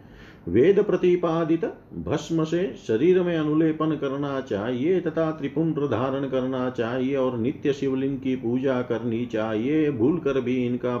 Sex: male